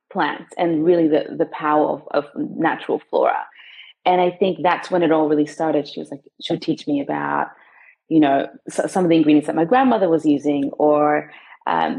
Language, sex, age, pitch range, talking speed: English, female, 30-49, 155-180 Hz, 200 wpm